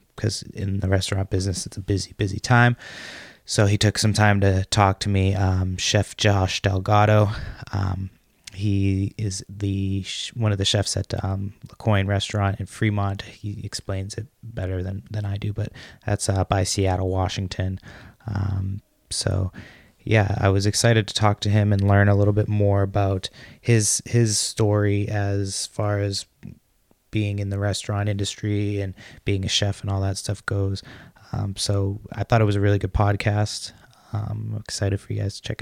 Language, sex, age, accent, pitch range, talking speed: English, male, 20-39, American, 100-110 Hz, 180 wpm